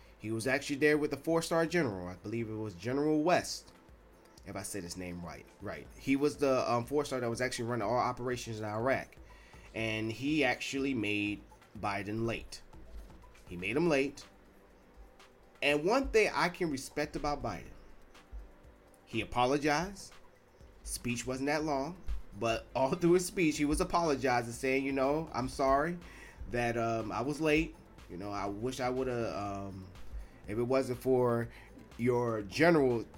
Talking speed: 160 wpm